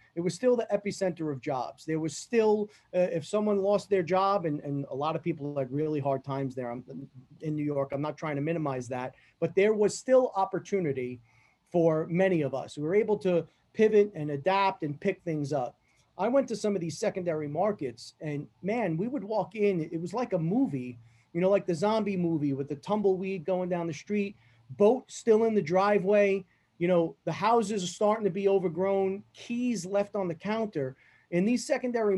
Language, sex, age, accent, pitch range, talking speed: English, male, 30-49, American, 145-205 Hz, 205 wpm